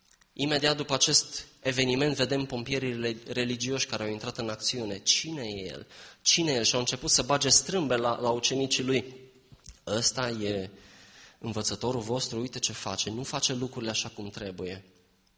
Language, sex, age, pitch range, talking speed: Romanian, male, 20-39, 110-140 Hz, 160 wpm